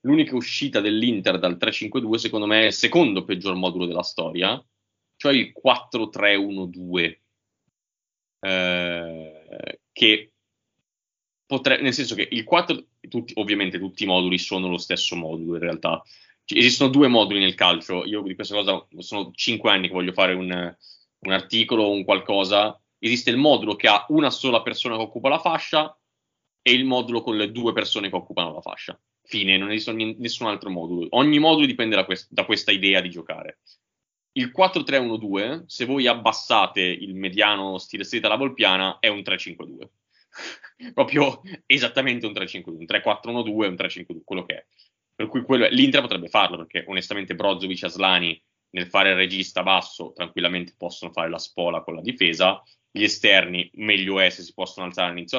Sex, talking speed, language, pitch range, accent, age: male, 170 wpm, Italian, 90-115 Hz, native, 20-39